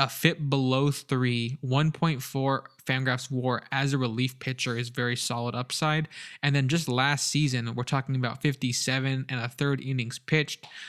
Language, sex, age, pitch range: English, male, 20-39, 125-145 Hz